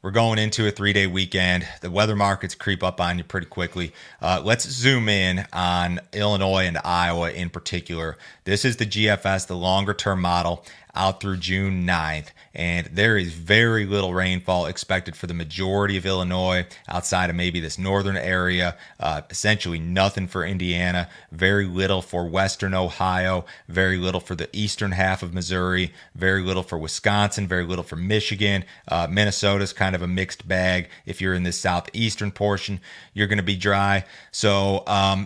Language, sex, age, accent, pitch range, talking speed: English, male, 30-49, American, 90-100 Hz, 170 wpm